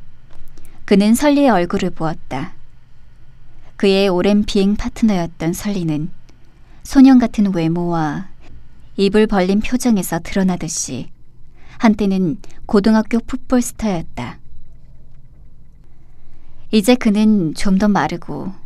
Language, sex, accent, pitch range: Korean, male, native, 130-205 Hz